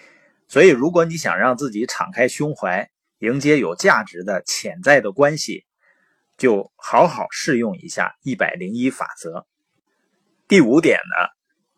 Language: Chinese